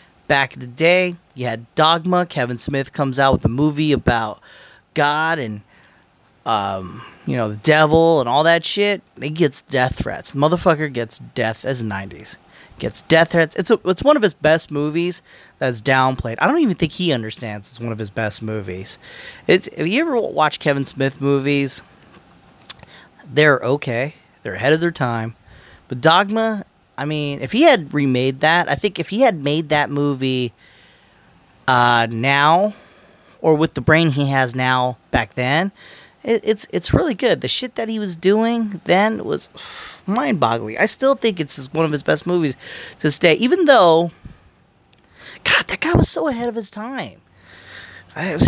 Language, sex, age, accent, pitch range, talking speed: English, male, 30-49, American, 125-180 Hz, 175 wpm